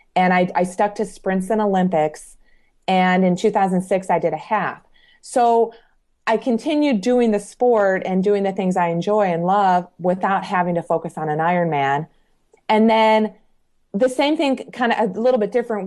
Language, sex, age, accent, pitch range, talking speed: English, female, 30-49, American, 180-215 Hz, 180 wpm